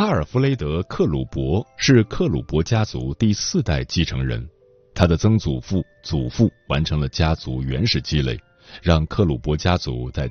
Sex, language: male, Chinese